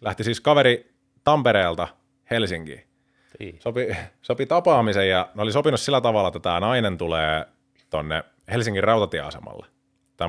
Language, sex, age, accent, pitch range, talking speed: Finnish, male, 30-49, native, 90-130 Hz, 120 wpm